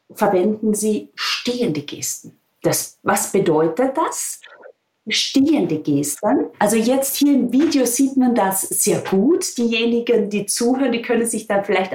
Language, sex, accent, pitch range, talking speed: German, female, German, 195-260 Hz, 140 wpm